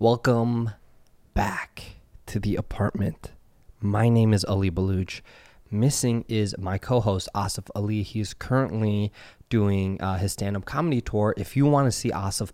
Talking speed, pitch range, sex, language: 145 wpm, 100-115 Hz, male, English